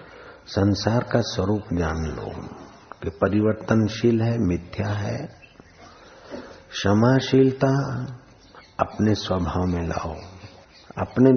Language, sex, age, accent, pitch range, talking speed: Hindi, male, 60-79, native, 90-115 Hz, 85 wpm